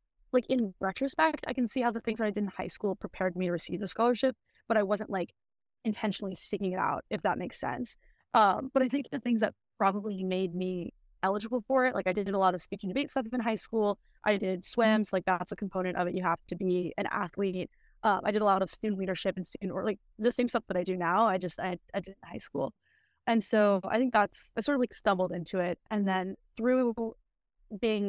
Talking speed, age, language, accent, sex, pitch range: 250 wpm, 20-39, English, American, female, 185-225 Hz